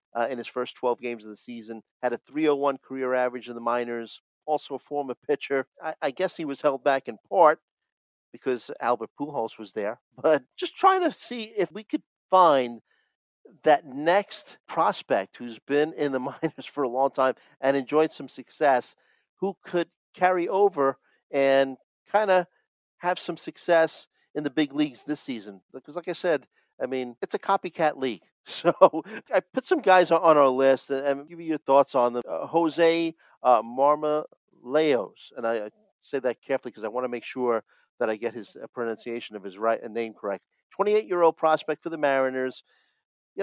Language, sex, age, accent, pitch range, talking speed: English, male, 50-69, American, 125-165 Hz, 185 wpm